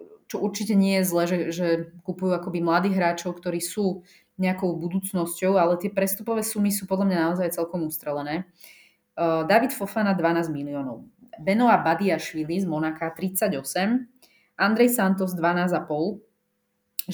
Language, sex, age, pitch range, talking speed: Slovak, female, 20-39, 160-195 Hz, 135 wpm